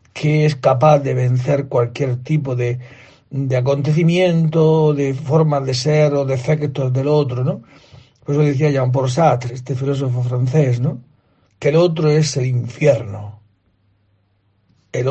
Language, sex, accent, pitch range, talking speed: Spanish, male, Spanish, 120-155 Hz, 145 wpm